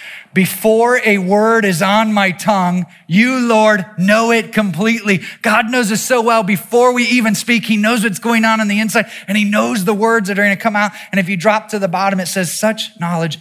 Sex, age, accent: male, 30-49, American